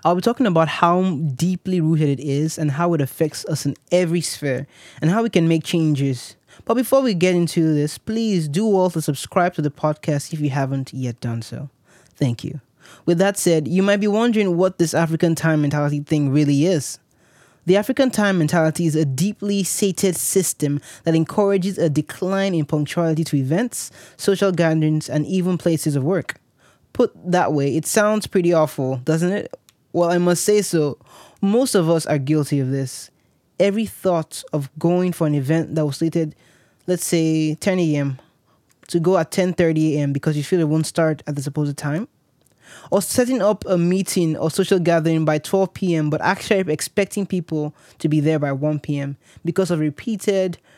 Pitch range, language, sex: 150-185 Hz, English, male